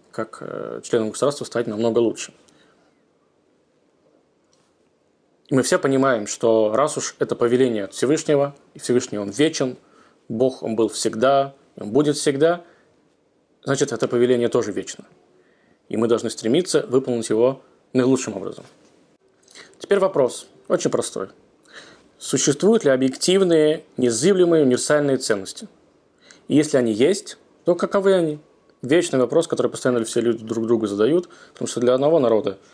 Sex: male